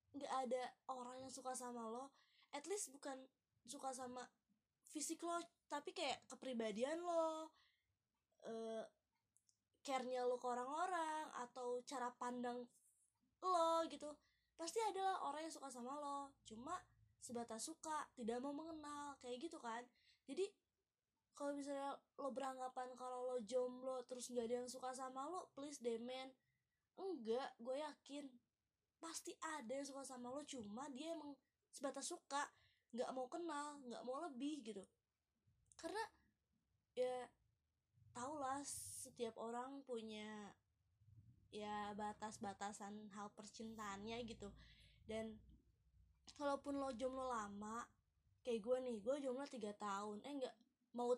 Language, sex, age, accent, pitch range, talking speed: Indonesian, female, 20-39, native, 230-285 Hz, 130 wpm